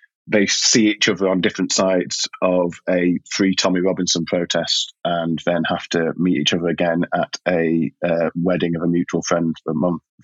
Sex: male